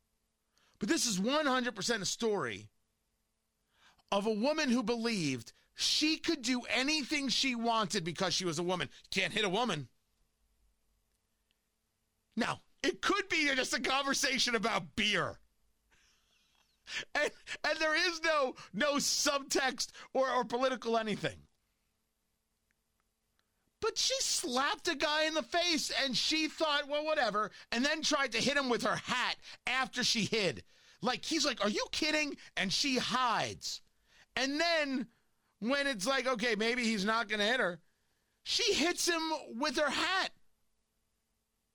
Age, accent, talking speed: 40-59, American, 140 wpm